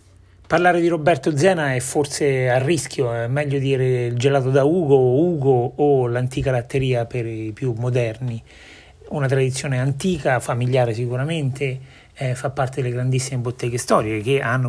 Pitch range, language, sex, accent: 120-140 Hz, Italian, male, native